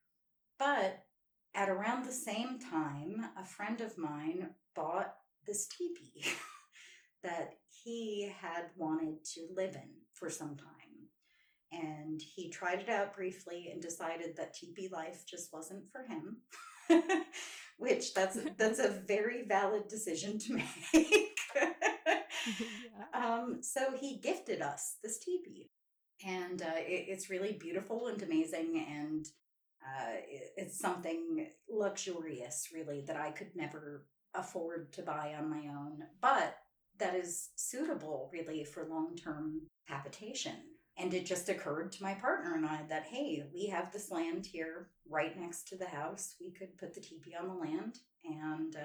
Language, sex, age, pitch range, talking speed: English, female, 30-49, 160-225 Hz, 140 wpm